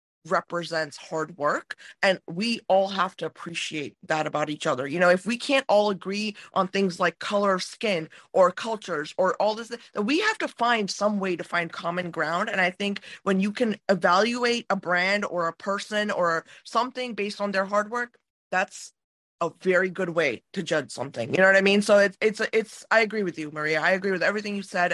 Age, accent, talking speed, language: 20-39, American, 210 wpm, English